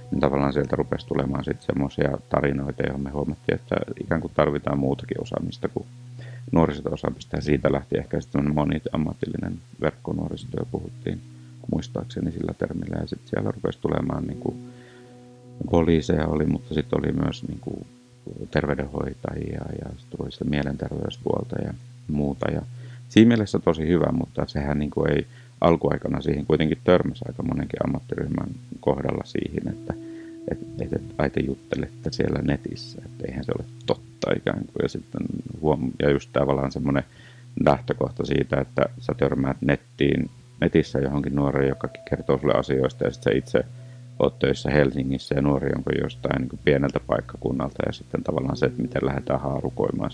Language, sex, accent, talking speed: Finnish, male, native, 140 wpm